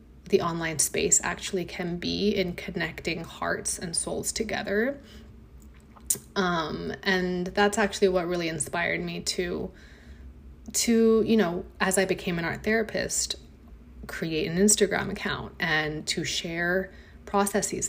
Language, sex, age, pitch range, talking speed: English, female, 20-39, 155-205 Hz, 125 wpm